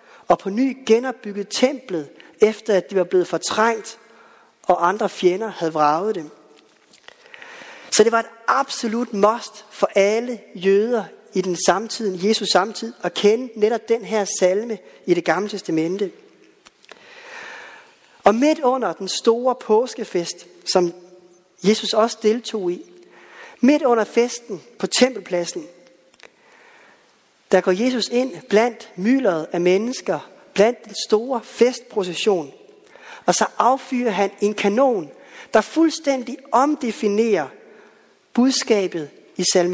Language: Danish